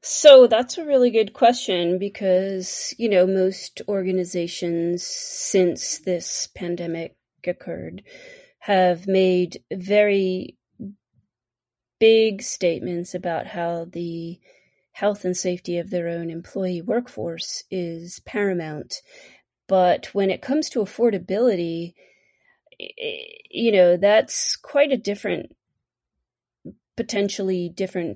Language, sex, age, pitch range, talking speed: English, female, 30-49, 175-230 Hz, 100 wpm